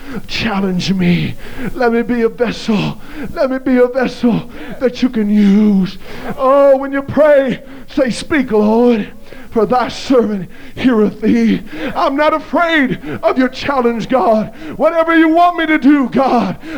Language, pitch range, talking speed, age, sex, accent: English, 200-270 Hz, 150 wpm, 50-69, male, American